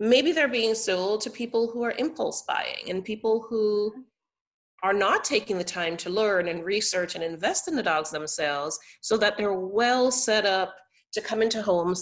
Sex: female